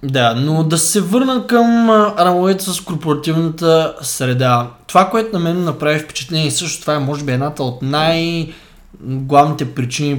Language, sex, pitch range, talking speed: Bulgarian, male, 135-175 Hz, 160 wpm